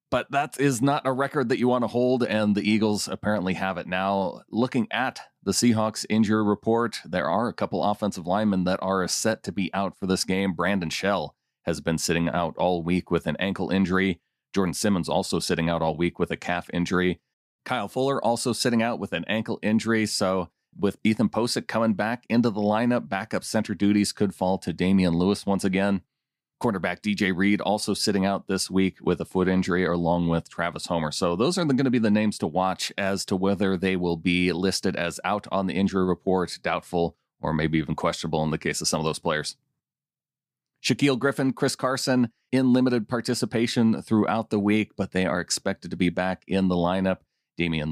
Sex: male